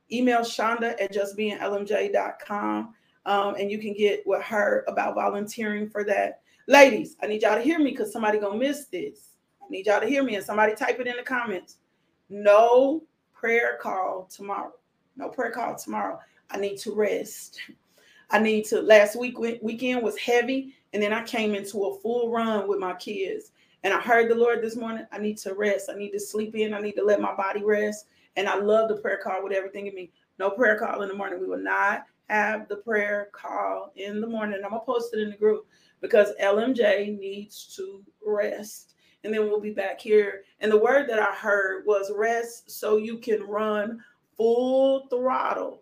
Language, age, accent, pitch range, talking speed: English, 40-59, American, 200-235 Hz, 200 wpm